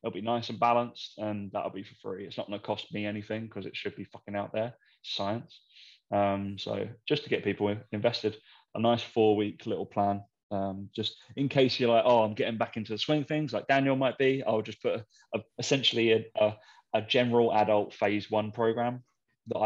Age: 20-39